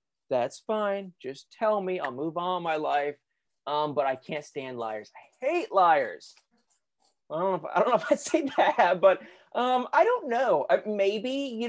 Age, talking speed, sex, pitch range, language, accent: 20-39, 195 wpm, male, 150-230 Hz, English, American